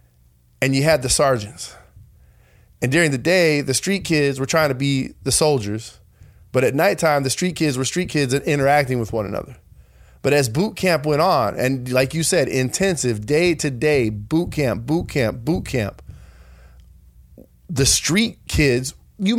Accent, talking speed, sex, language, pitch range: American, 165 wpm, male, English, 125-165 Hz